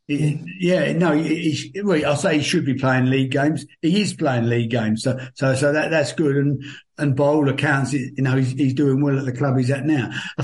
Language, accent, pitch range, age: English, British, 135-155 Hz, 50-69